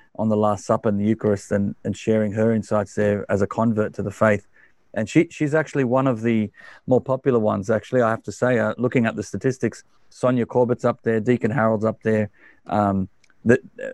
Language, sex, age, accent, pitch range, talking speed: English, male, 40-59, Australian, 110-125 Hz, 210 wpm